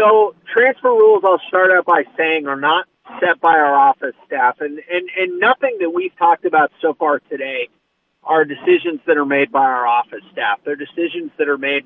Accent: American